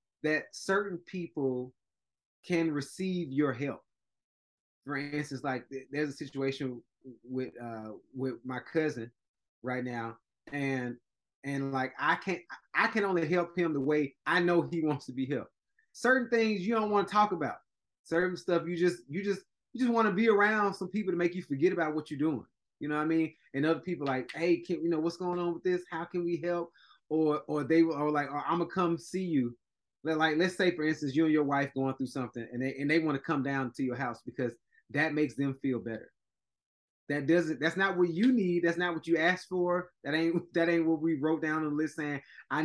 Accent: American